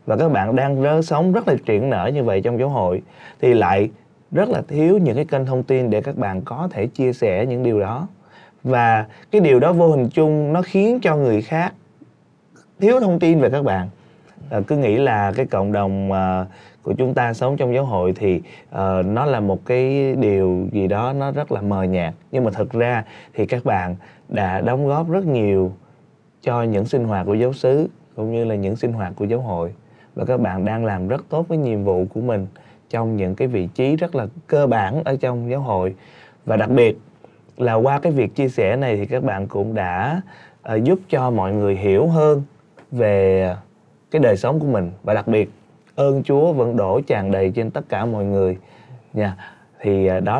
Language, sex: Vietnamese, male